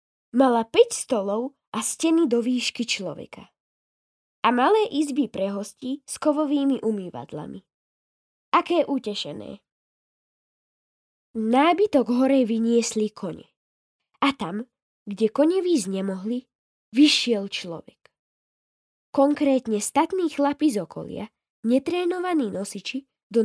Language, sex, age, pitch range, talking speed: Slovak, female, 10-29, 215-295 Hz, 95 wpm